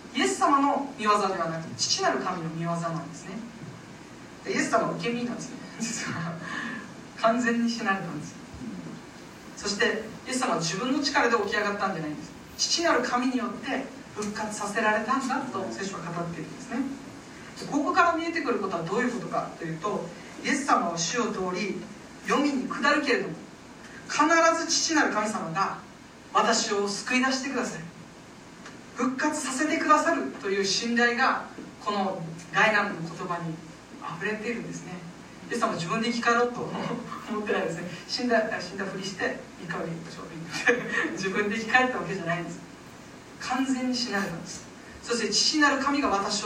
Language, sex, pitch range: Japanese, female, 190-260 Hz